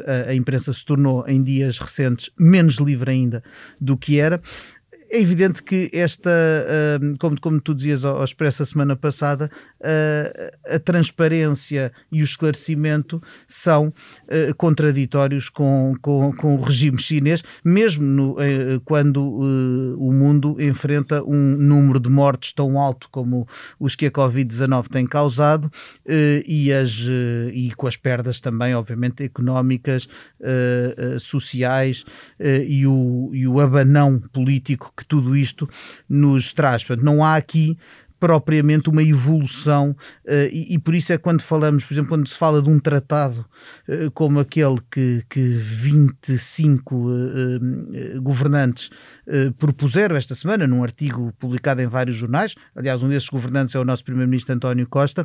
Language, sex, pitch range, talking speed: Portuguese, male, 130-155 Hz, 140 wpm